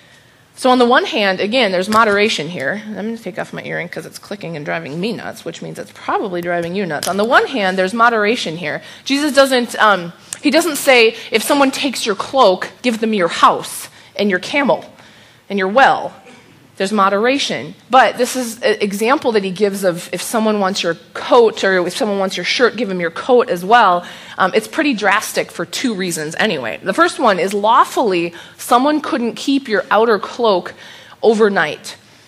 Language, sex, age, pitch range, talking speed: English, female, 20-39, 185-250 Hz, 195 wpm